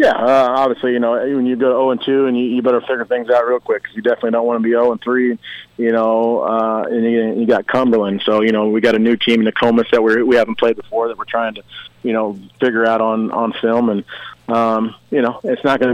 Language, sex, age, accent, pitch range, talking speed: English, male, 30-49, American, 110-120 Hz, 265 wpm